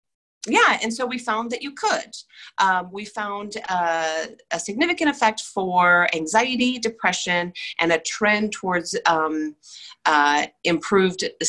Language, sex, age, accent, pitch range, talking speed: English, female, 40-59, American, 165-215 Hz, 130 wpm